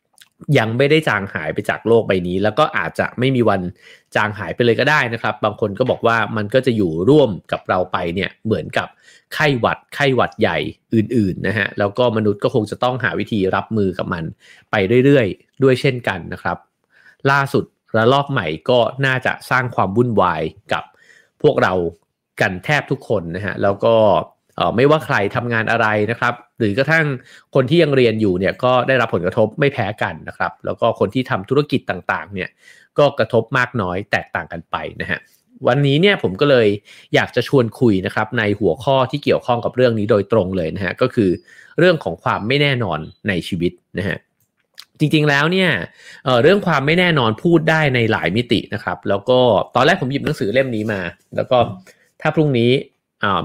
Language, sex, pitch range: English, male, 100-135 Hz